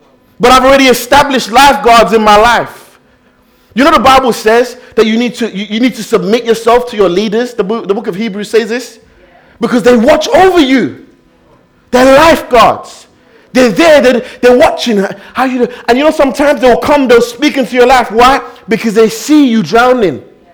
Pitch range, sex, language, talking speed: 220-260 Hz, male, English, 190 wpm